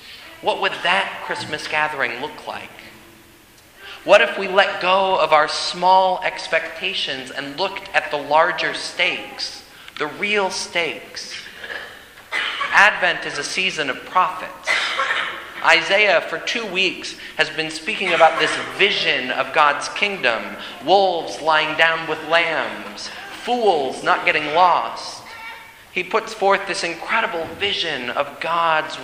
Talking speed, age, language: 125 wpm, 40-59, English